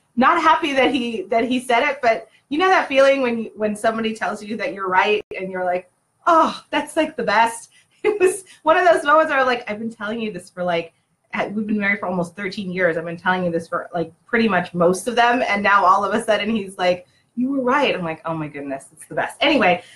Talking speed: 255 wpm